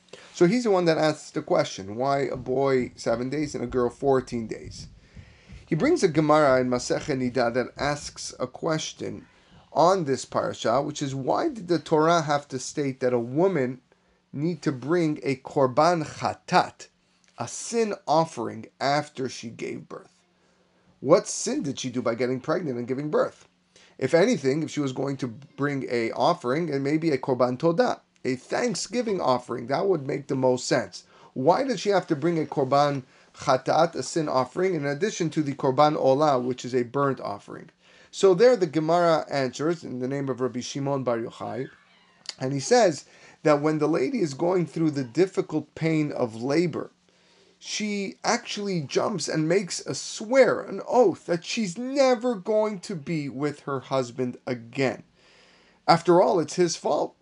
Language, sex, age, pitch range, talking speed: English, male, 30-49, 130-175 Hz, 175 wpm